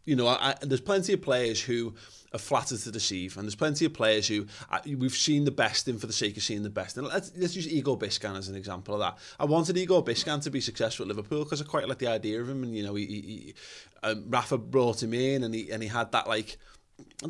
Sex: male